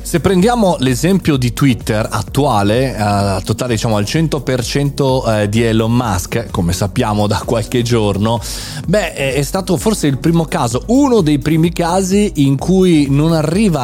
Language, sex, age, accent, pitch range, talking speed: Italian, male, 30-49, native, 105-145 Hz, 145 wpm